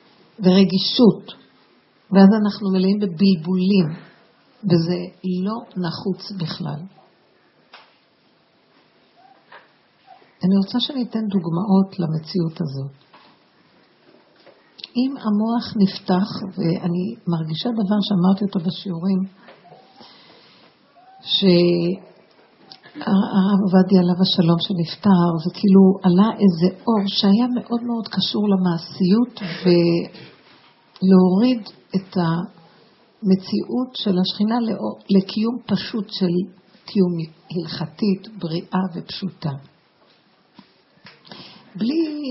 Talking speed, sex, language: 75 wpm, female, Hebrew